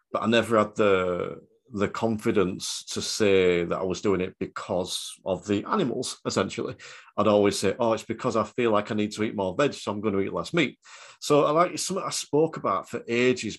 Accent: British